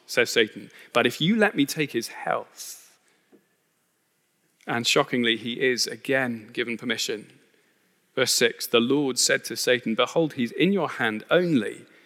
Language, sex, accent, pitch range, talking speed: English, male, British, 130-180 Hz, 150 wpm